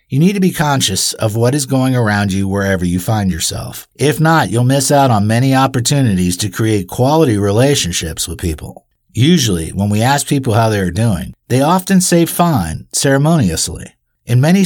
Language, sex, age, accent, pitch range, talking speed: English, male, 50-69, American, 105-140 Hz, 185 wpm